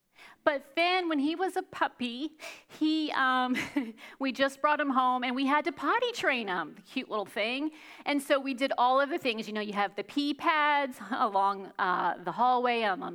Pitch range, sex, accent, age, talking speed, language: 235-310 Hz, female, American, 40-59, 205 wpm, English